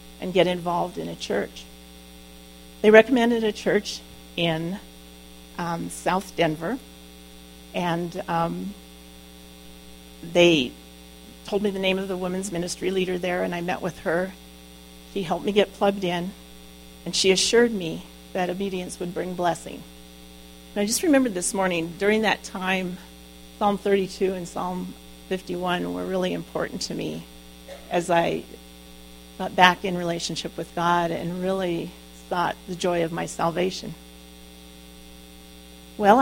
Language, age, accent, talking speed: English, 40-59, American, 135 wpm